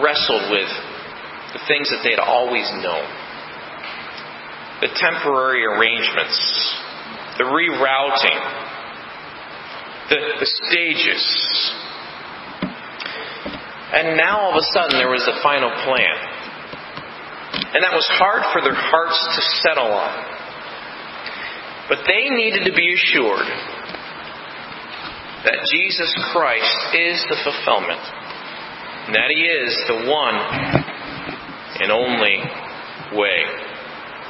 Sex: male